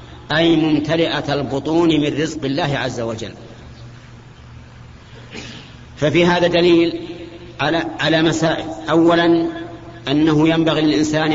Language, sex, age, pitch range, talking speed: Arabic, male, 50-69, 145-170 Hz, 95 wpm